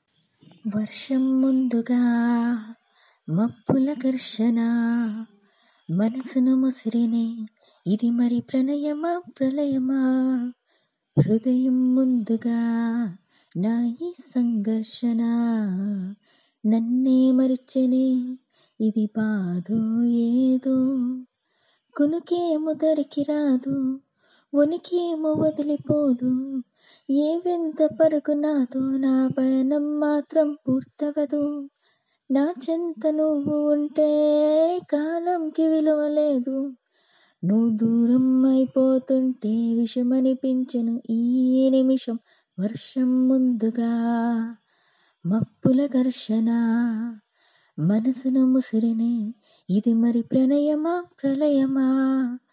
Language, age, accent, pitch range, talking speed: Telugu, 20-39, native, 230-290 Hz, 60 wpm